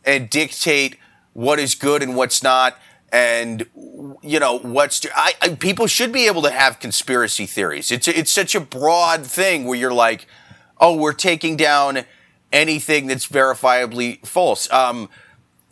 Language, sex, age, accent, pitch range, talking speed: English, male, 30-49, American, 125-160 Hz, 155 wpm